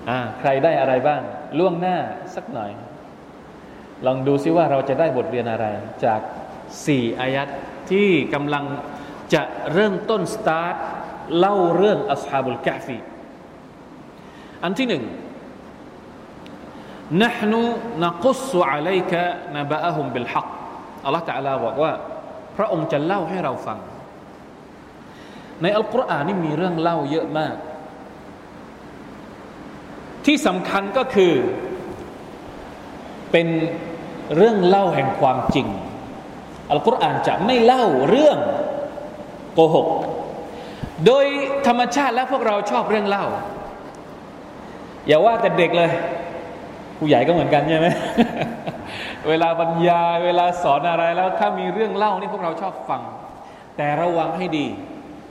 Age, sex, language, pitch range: 20-39, male, Thai, 155-210 Hz